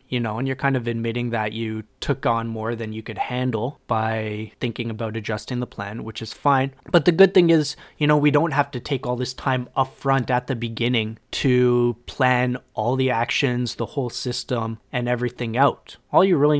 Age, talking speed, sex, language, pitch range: 20-39, 210 wpm, male, English, 110-130 Hz